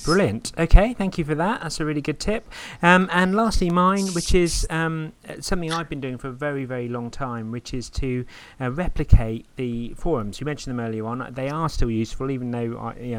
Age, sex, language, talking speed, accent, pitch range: 30-49, male, English, 225 wpm, British, 115-140 Hz